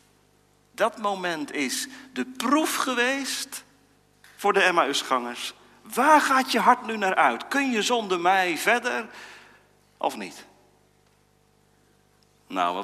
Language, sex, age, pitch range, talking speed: Dutch, male, 40-59, 185-270 Hz, 110 wpm